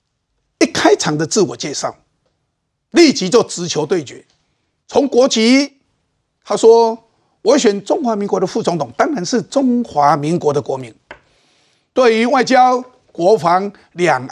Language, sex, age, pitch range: Chinese, male, 50-69, 180-245 Hz